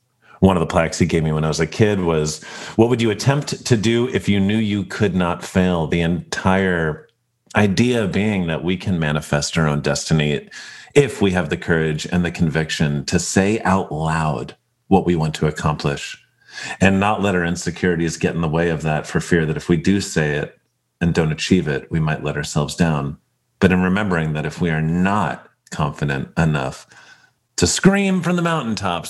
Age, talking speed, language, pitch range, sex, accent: 40-59, 200 wpm, English, 80-110 Hz, male, American